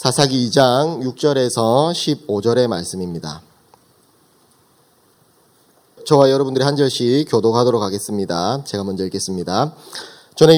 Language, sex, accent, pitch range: Korean, male, native, 120-150 Hz